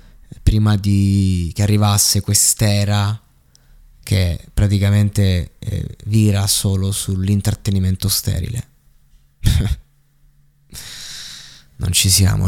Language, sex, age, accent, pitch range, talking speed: Italian, male, 20-39, native, 90-105 Hz, 70 wpm